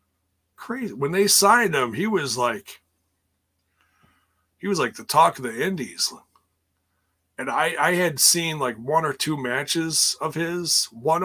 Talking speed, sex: 155 wpm, male